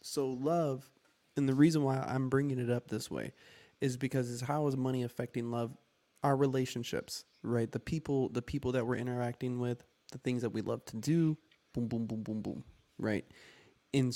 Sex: male